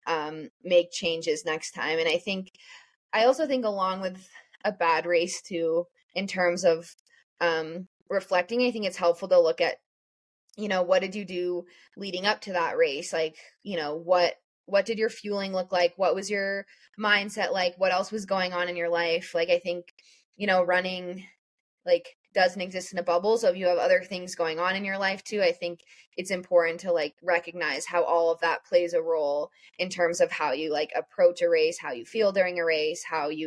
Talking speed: 210 wpm